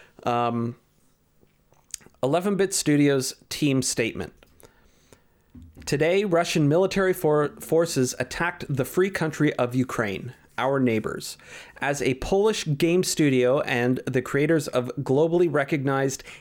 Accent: American